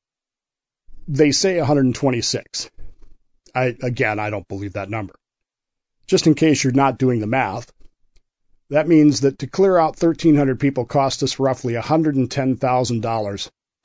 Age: 50-69